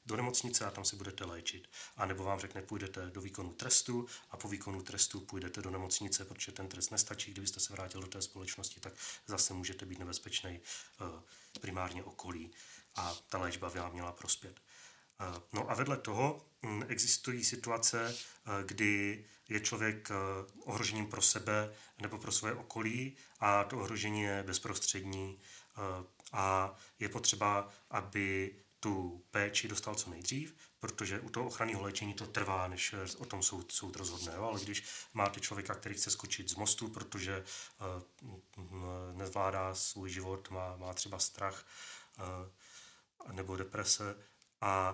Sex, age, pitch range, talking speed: male, 30-49, 95-105 Hz, 145 wpm